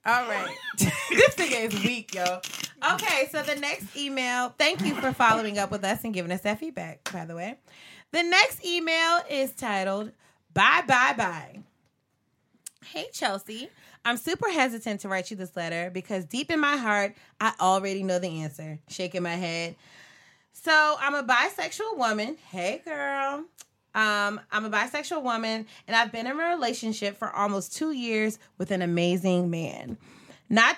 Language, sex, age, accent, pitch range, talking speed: English, female, 20-39, American, 185-260 Hz, 165 wpm